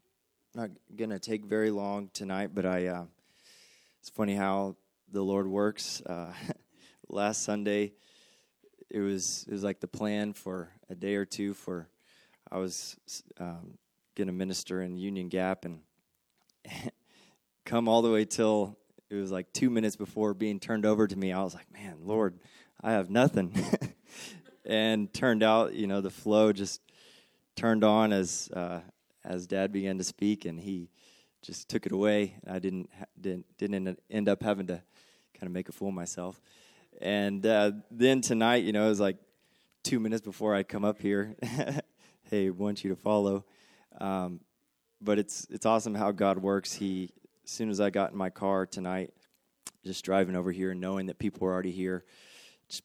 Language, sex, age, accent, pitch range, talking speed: English, male, 20-39, American, 95-105 Hz, 180 wpm